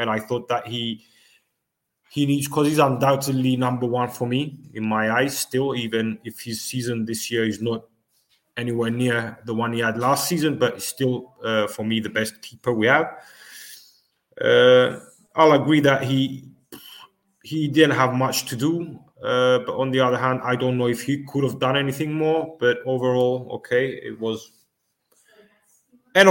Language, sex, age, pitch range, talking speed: English, male, 30-49, 115-150 Hz, 175 wpm